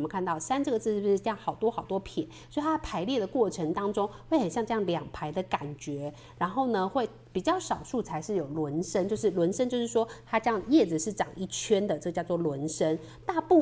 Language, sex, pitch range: Chinese, female, 160-230 Hz